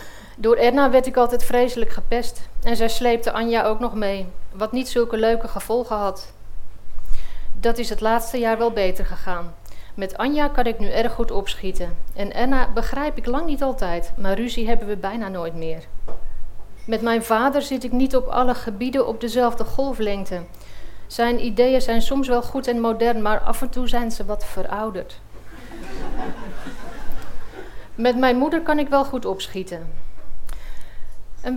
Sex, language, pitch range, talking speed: female, Dutch, 195-250 Hz, 165 wpm